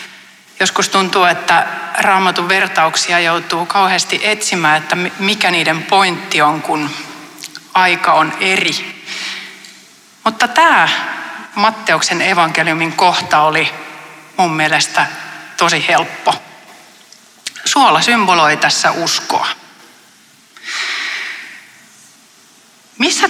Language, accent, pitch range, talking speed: Finnish, native, 165-220 Hz, 80 wpm